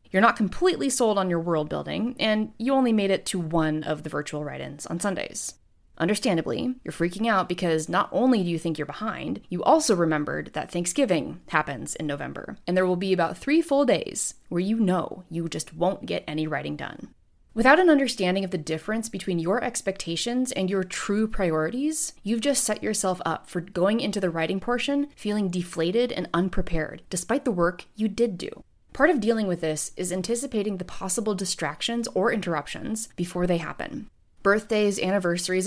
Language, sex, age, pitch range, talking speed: English, female, 20-39, 170-225 Hz, 185 wpm